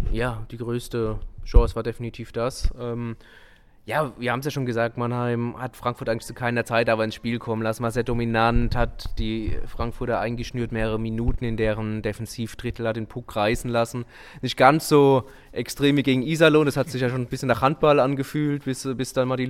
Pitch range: 110-120 Hz